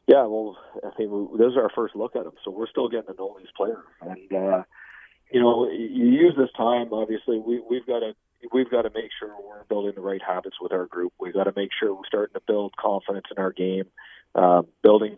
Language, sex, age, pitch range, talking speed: English, male, 40-59, 95-120 Hz, 240 wpm